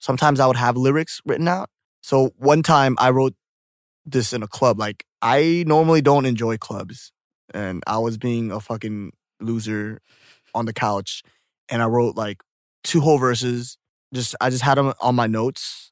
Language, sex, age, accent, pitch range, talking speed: English, male, 20-39, American, 110-140 Hz, 175 wpm